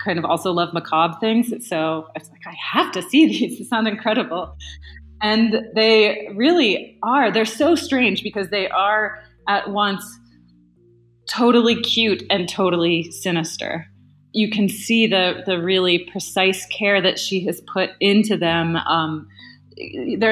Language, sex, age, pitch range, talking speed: English, female, 30-49, 175-220 Hz, 150 wpm